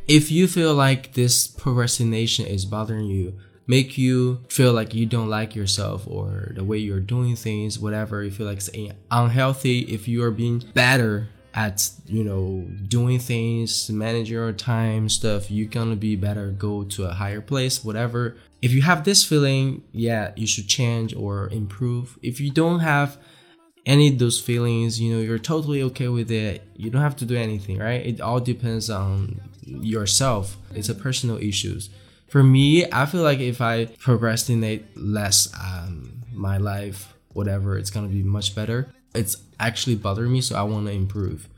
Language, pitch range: Chinese, 105-125 Hz